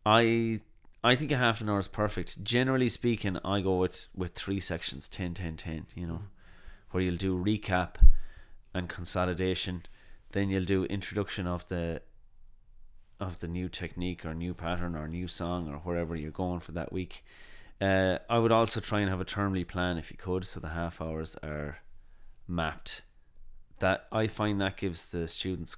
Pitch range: 85-105 Hz